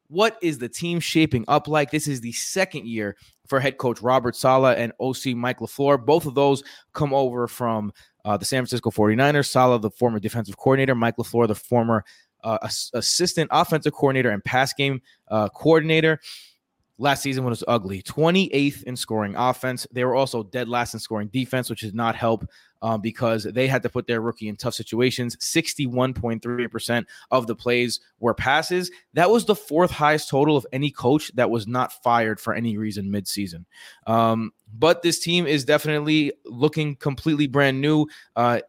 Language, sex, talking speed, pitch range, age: English, male, 180 wpm, 115-150 Hz, 20-39